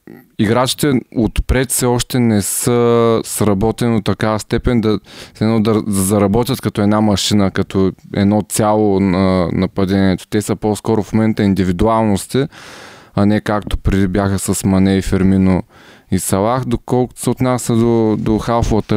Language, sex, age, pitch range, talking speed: Bulgarian, male, 20-39, 95-115 Hz, 135 wpm